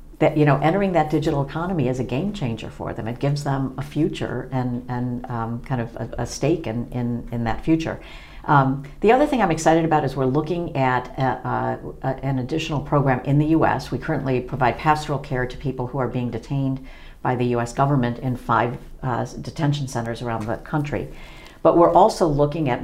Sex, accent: female, American